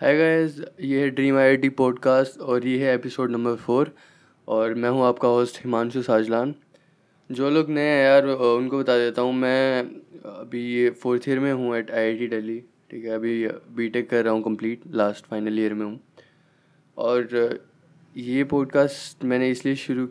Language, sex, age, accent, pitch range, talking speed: Hindi, male, 20-39, native, 110-135 Hz, 180 wpm